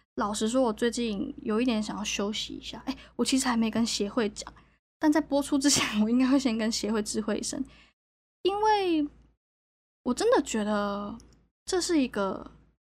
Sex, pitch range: female, 215-275 Hz